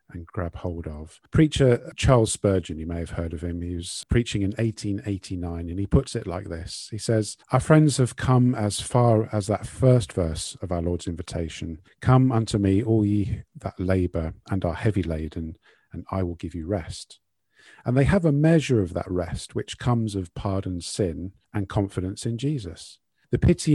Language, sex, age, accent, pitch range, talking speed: English, male, 50-69, British, 90-115 Hz, 190 wpm